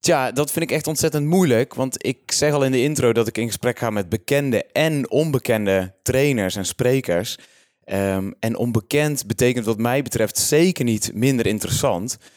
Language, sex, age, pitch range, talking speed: Dutch, male, 30-49, 110-140 Hz, 180 wpm